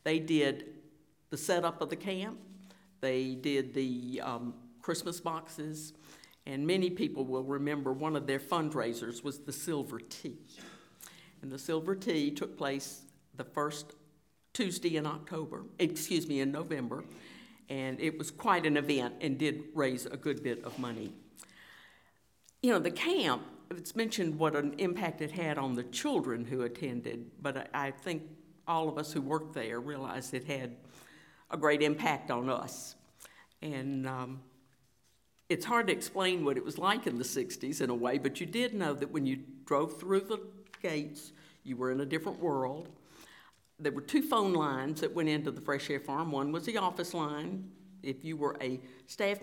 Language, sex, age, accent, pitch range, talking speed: English, female, 60-79, American, 135-175 Hz, 175 wpm